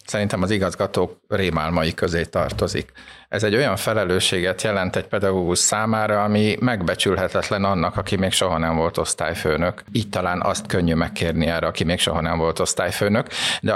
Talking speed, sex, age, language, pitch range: 155 wpm, male, 50-69, Hungarian, 85-100 Hz